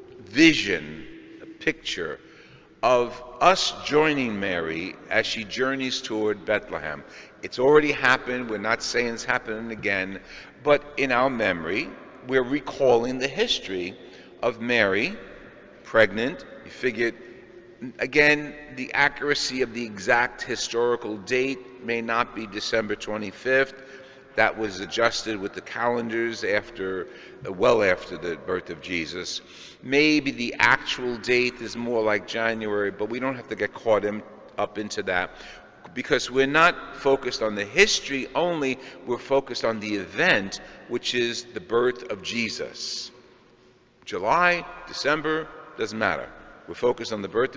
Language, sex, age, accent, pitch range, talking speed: English, male, 50-69, American, 110-140 Hz, 135 wpm